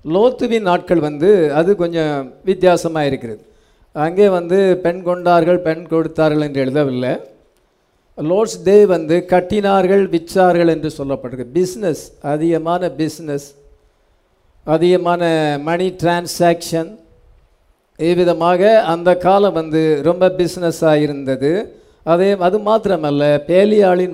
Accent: Indian